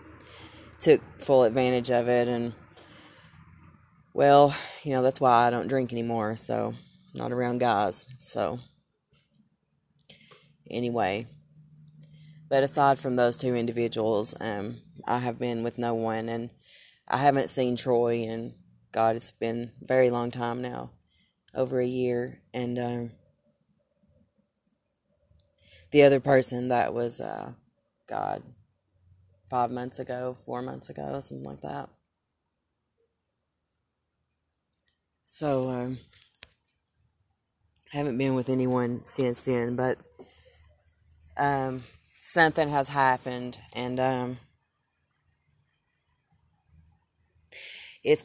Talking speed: 110 wpm